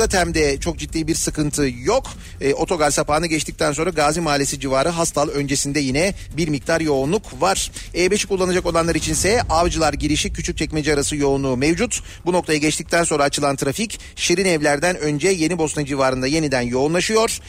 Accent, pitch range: native, 145-180 Hz